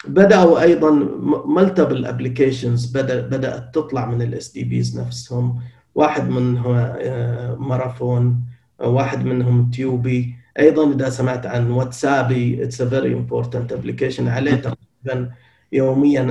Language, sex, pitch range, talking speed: Arabic, male, 125-180 Hz, 110 wpm